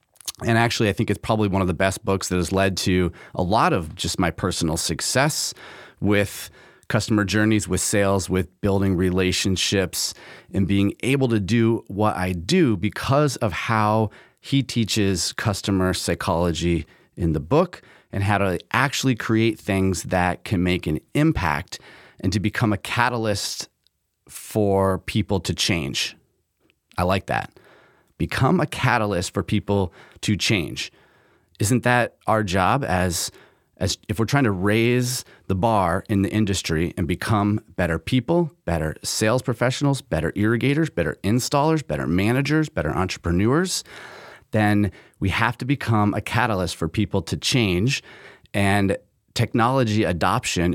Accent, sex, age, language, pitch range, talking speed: American, male, 30-49, English, 95-120 Hz, 145 wpm